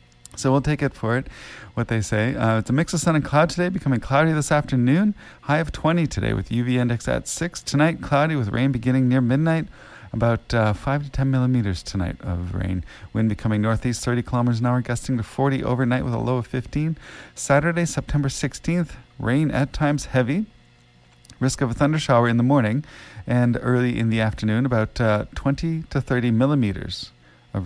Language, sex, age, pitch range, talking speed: English, male, 40-59, 100-140 Hz, 195 wpm